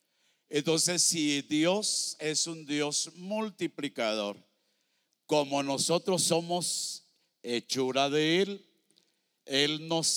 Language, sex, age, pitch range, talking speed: English, male, 50-69, 135-175 Hz, 90 wpm